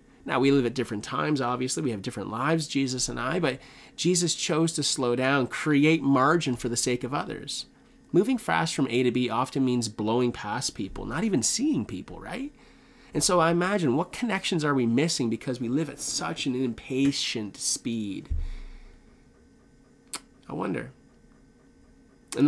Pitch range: 115-150 Hz